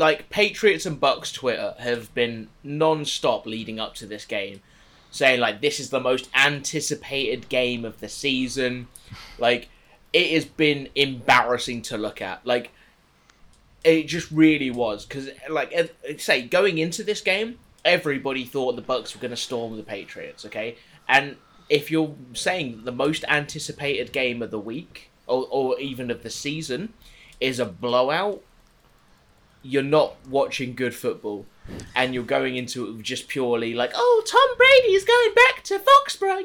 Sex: male